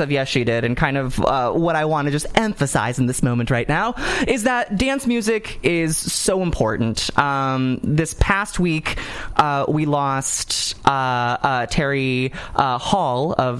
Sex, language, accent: male, English, American